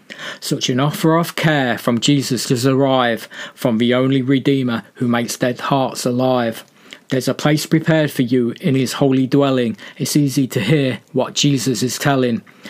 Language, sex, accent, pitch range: English, male, British, 125-145 Hz